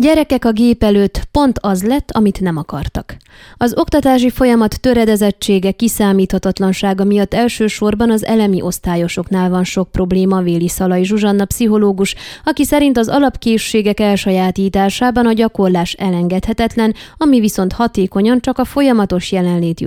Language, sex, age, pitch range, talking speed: Hungarian, female, 20-39, 185-230 Hz, 125 wpm